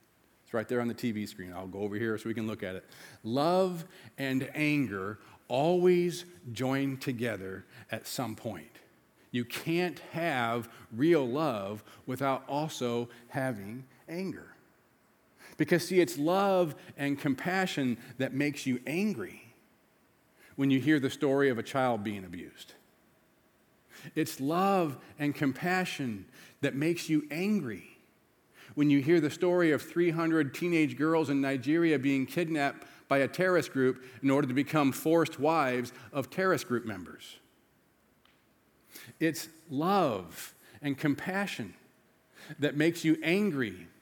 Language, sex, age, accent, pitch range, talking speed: English, male, 40-59, American, 125-165 Hz, 130 wpm